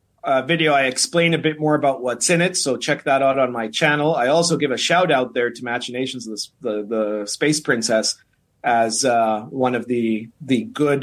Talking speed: 210 wpm